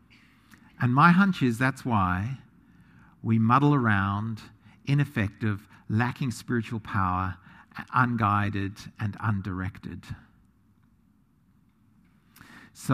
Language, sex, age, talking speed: English, male, 50-69, 80 wpm